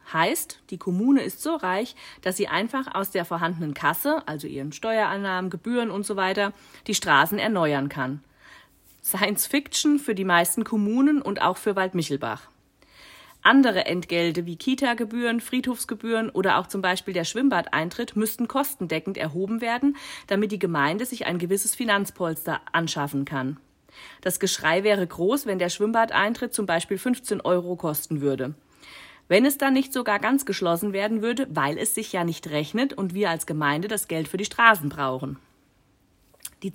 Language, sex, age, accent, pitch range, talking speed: German, female, 40-59, German, 165-230 Hz, 155 wpm